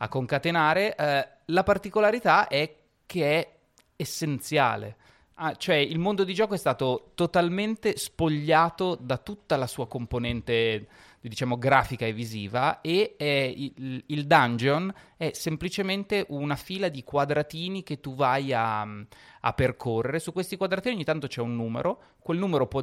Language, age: Italian, 30-49